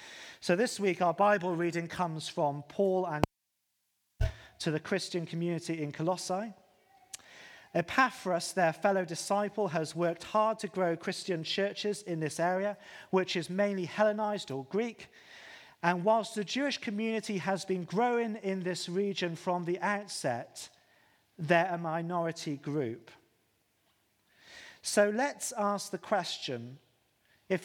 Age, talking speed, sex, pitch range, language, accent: 40-59, 130 wpm, male, 150-200 Hz, English, British